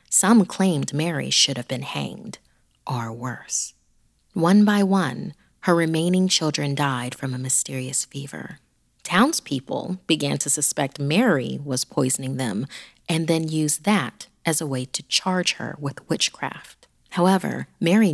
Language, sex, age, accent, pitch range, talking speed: English, female, 30-49, American, 145-180 Hz, 140 wpm